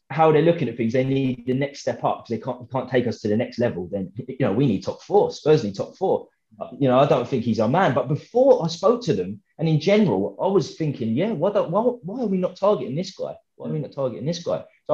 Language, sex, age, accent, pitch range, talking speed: English, male, 20-39, British, 120-180 Hz, 285 wpm